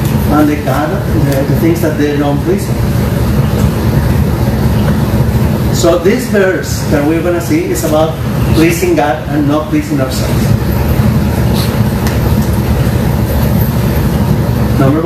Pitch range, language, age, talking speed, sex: 115-165 Hz, English, 40-59, 110 wpm, male